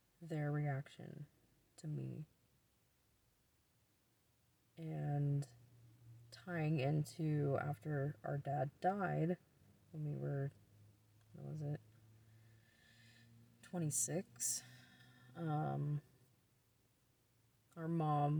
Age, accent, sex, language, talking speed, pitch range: 20-39, American, female, English, 70 wpm, 135-160 Hz